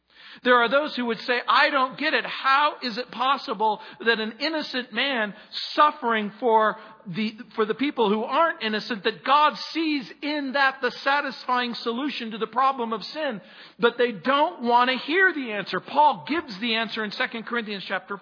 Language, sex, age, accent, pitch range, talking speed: English, male, 50-69, American, 215-275 Hz, 185 wpm